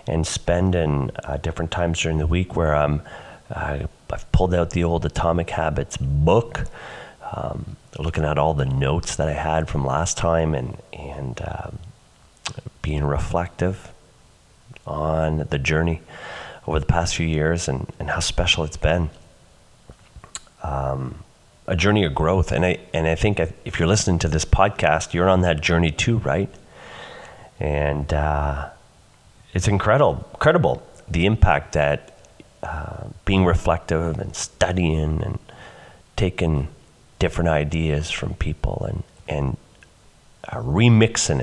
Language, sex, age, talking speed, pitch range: English, male, 30-49, 140 wpm, 75-90 Hz